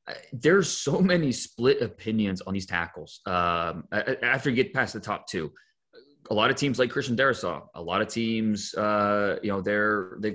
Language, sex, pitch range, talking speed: English, male, 95-120 Hz, 185 wpm